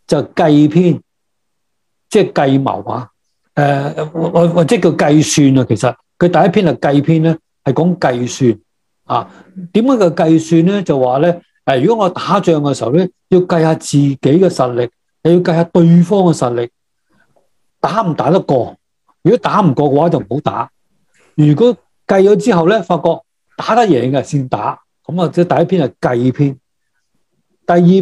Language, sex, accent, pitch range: English, male, Chinese, 145-185 Hz